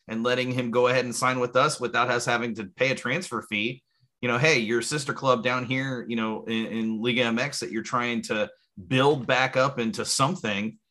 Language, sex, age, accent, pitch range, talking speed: English, male, 30-49, American, 115-140 Hz, 220 wpm